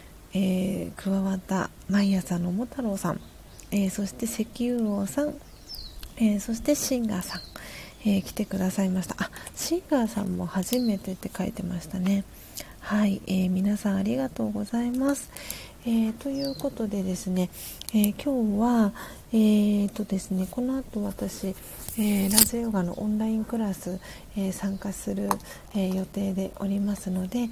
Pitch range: 195-230 Hz